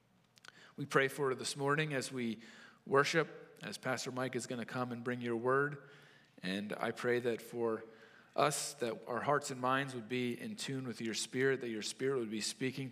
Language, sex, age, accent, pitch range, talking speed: English, male, 40-59, American, 115-135 Hz, 200 wpm